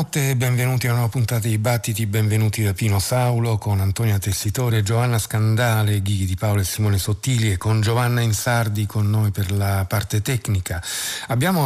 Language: Italian